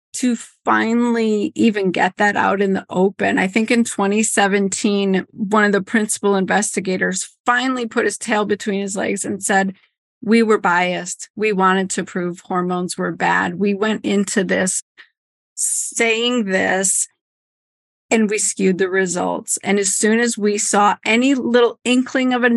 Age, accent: 40-59, American